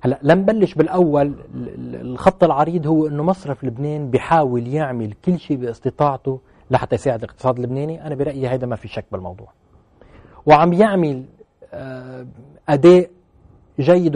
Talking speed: 125 wpm